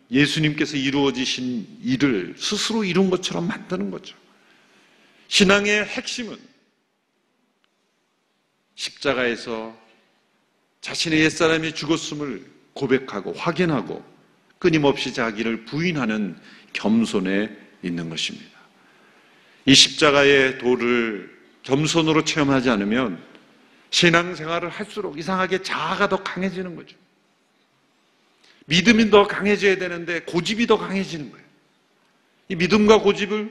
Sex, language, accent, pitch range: male, Korean, native, 135-195 Hz